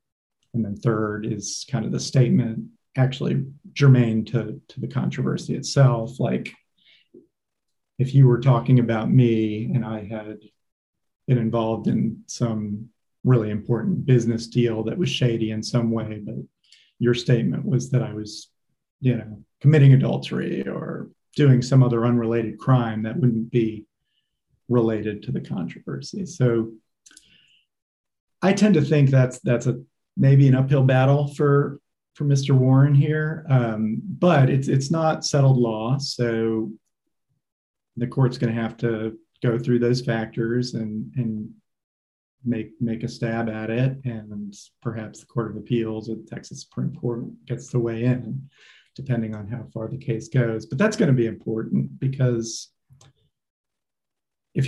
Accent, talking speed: American, 150 wpm